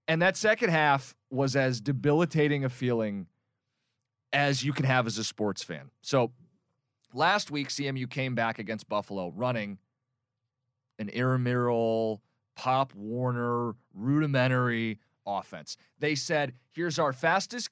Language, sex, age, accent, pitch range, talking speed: English, male, 30-49, American, 130-200 Hz, 120 wpm